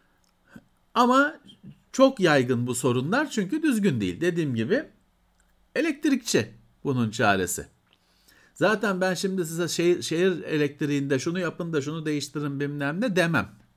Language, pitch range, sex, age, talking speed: Turkish, 130-205 Hz, male, 50-69, 120 wpm